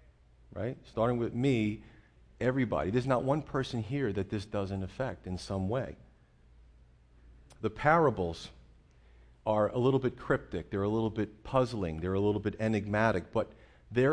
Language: English